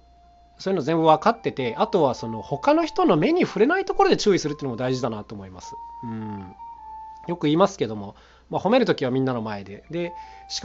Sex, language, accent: male, Japanese, native